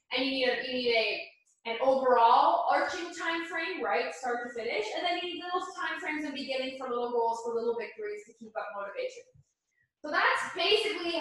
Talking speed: 205 wpm